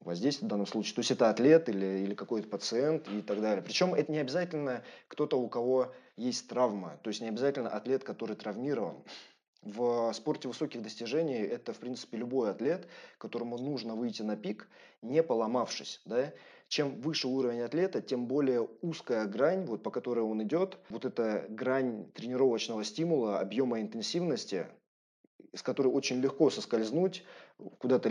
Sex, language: male, Russian